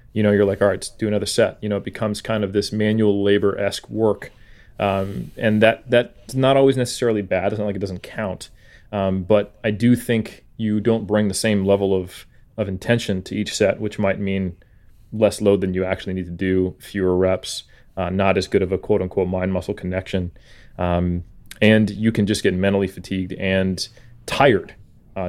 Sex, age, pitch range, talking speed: male, 30-49, 95-110 Hz, 200 wpm